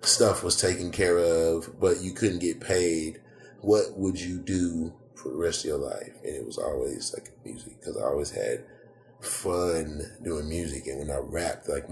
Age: 30-49